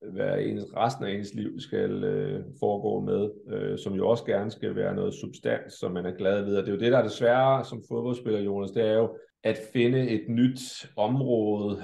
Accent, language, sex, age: native, Danish, male, 30-49